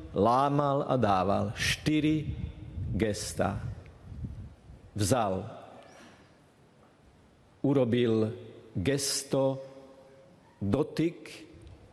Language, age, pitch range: Slovak, 50-69, 110-135 Hz